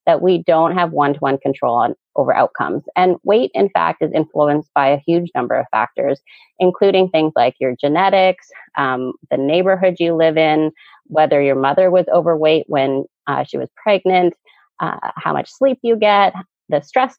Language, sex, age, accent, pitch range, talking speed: English, female, 30-49, American, 150-195 Hz, 170 wpm